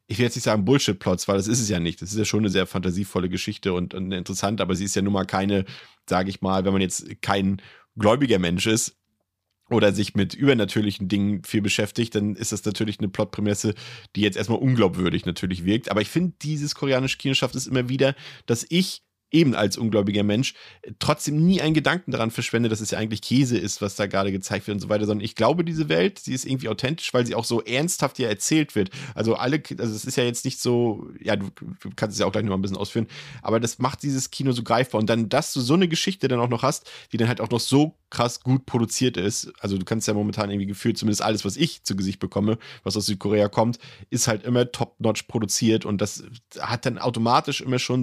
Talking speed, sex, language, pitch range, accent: 235 wpm, male, German, 105-130 Hz, German